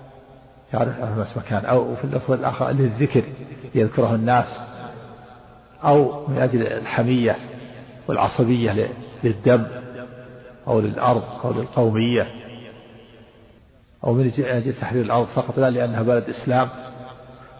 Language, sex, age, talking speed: Arabic, male, 50-69, 100 wpm